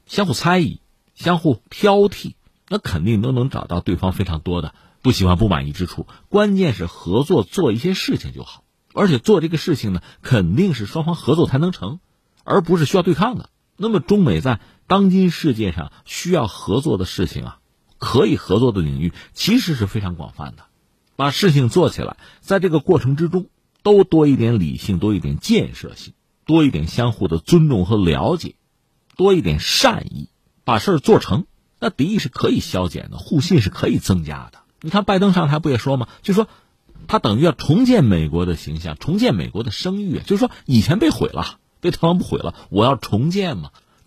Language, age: Chinese, 50-69